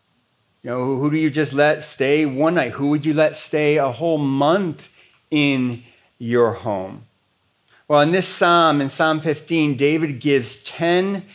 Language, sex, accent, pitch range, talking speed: English, male, American, 125-155 Hz, 155 wpm